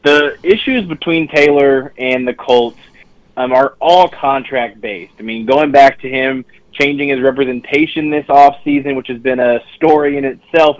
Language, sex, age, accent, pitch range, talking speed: English, male, 20-39, American, 110-135 Hz, 165 wpm